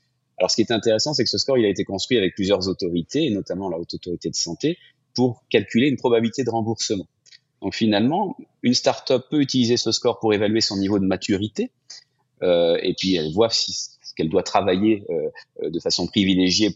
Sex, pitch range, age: male, 90-115 Hz, 30-49